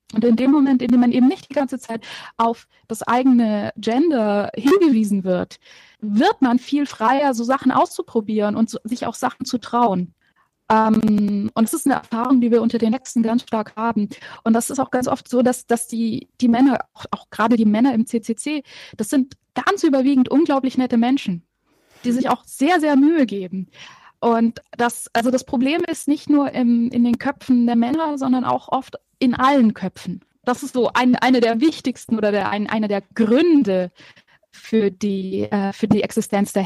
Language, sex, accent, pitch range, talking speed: German, female, German, 220-265 Hz, 195 wpm